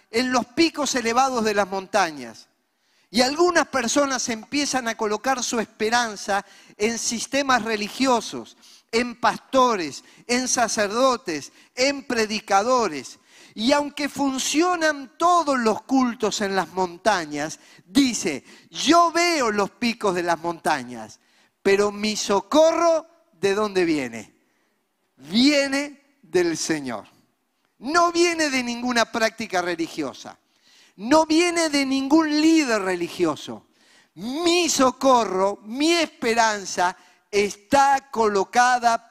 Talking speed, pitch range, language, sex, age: 105 wpm, 200-275 Hz, Spanish, male, 40-59